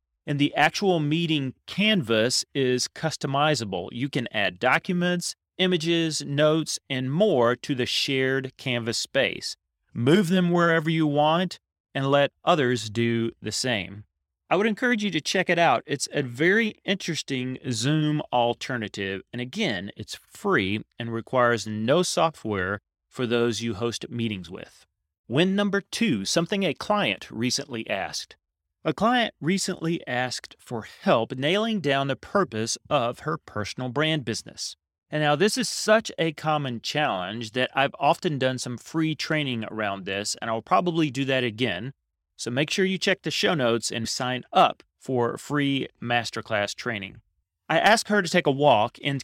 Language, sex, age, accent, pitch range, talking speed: English, male, 30-49, American, 115-165 Hz, 155 wpm